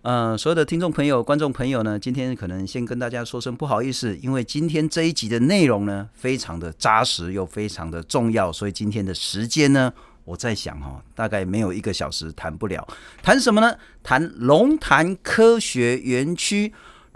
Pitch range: 95-145 Hz